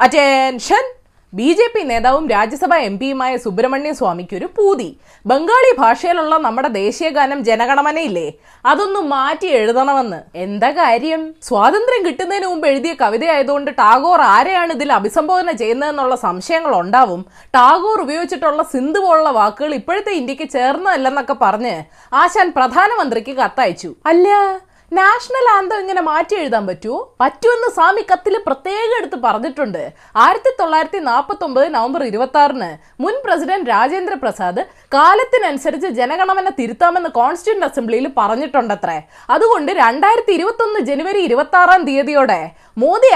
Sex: female